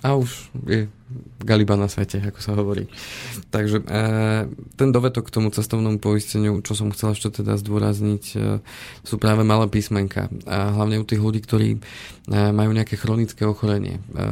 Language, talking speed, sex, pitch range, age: Slovak, 150 wpm, male, 100-110 Hz, 20-39